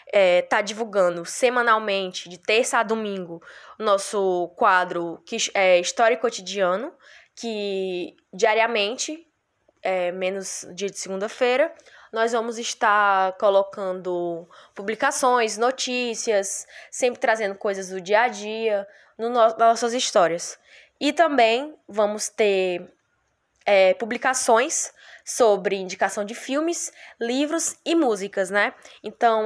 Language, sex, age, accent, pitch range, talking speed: Portuguese, female, 10-29, Brazilian, 195-245 Hz, 110 wpm